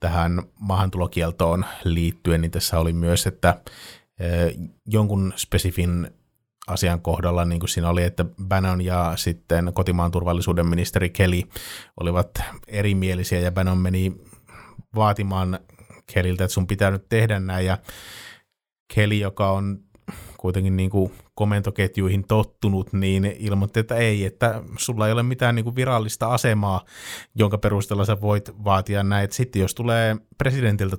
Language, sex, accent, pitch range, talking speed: Finnish, male, native, 90-105 Hz, 135 wpm